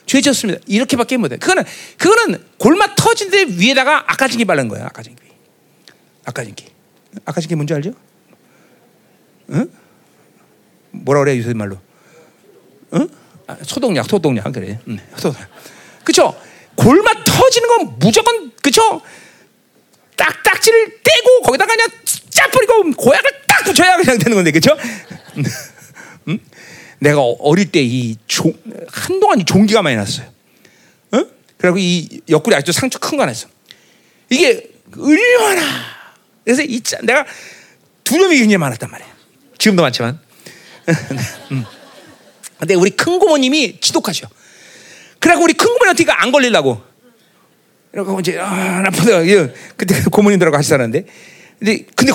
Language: Korean